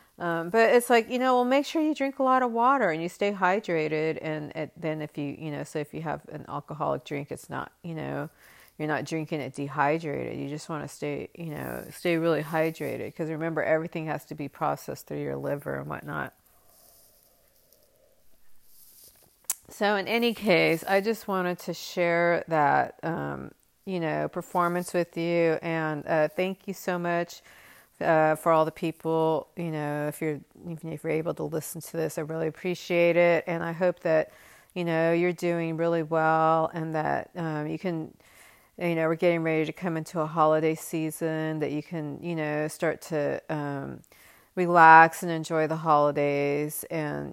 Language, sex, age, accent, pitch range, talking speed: English, female, 40-59, American, 155-170 Hz, 185 wpm